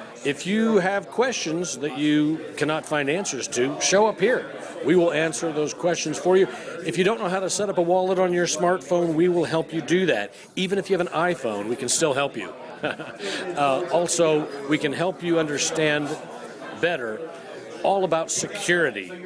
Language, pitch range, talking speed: English, 140-175 Hz, 190 wpm